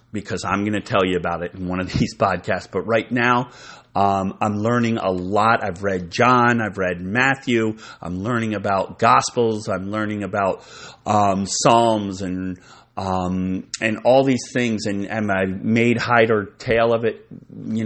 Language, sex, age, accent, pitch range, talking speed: English, male, 30-49, American, 100-120 Hz, 175 wpm